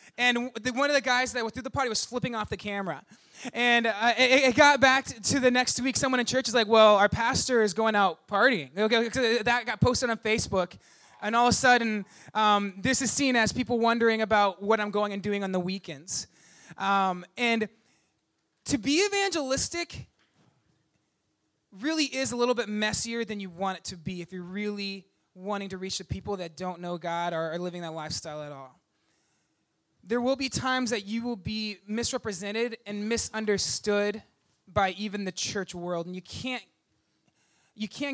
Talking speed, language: 190 wpm, English